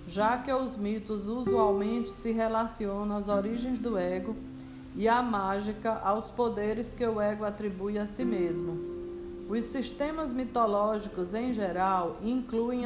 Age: 50-69